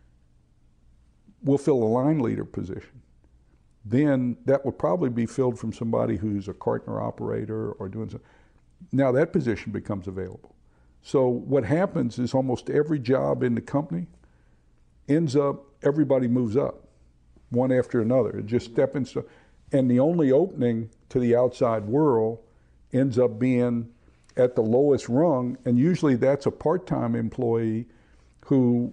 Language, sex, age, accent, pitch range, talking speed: English, male, 60-79, American, 110-135 Hz, 145 wpm